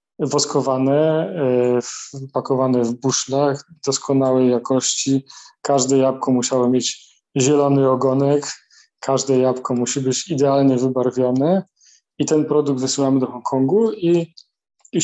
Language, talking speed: Polish, 105 wpm